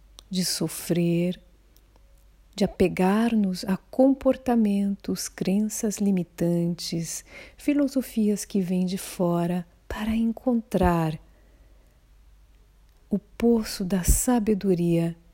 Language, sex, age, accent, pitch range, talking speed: Portuguese, female, 40-59, Brazilian, 155-205 Hz, 75 wpm